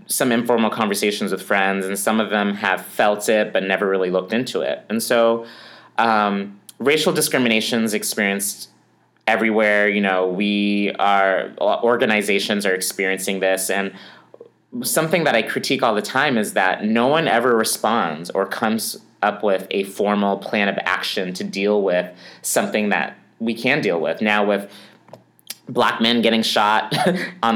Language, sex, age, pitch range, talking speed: English, male, 30-49, 100-115 Hz, 160 wpm